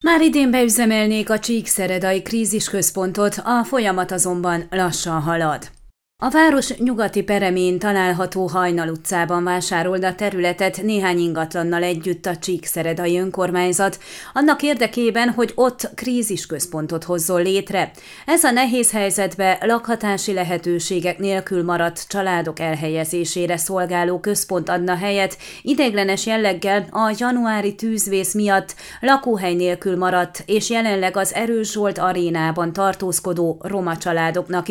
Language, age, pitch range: Hungarian, 30-49, 175-215 Hz